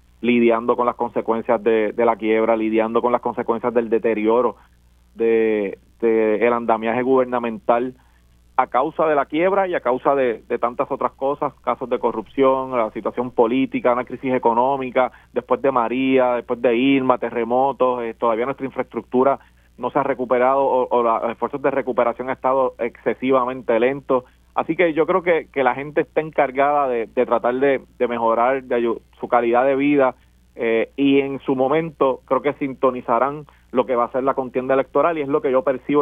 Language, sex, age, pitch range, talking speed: Spanish, male, 30-49, 115-140 Hz, 185 wpm